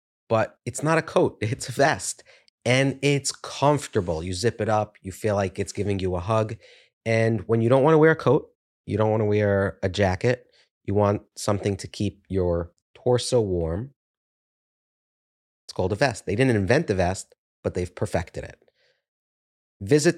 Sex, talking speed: male, 180 wpm